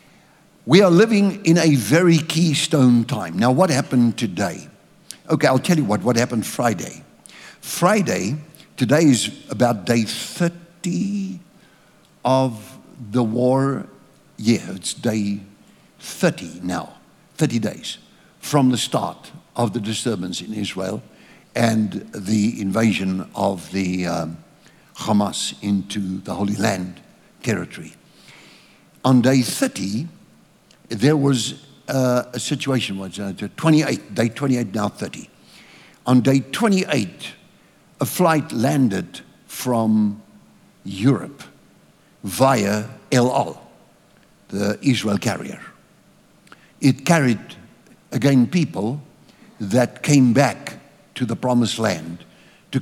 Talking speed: 110 wpm